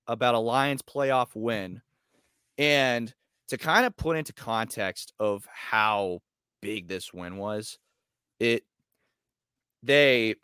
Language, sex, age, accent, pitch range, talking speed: English, male, 30-49, American, 100-130 Hz, 115 wpm